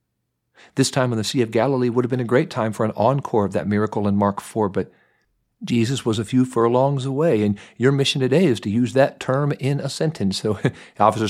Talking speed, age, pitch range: 235 wpm, 50-69, 105-140 Hz